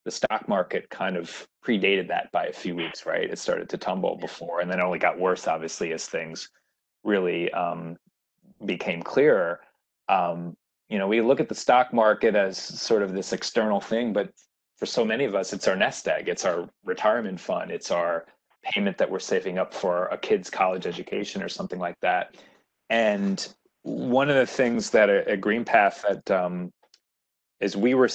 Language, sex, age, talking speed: English, male, 30-49, 190 wpm